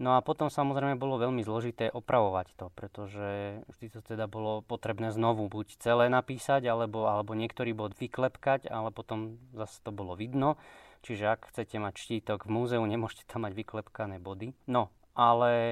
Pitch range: 110-125 Hz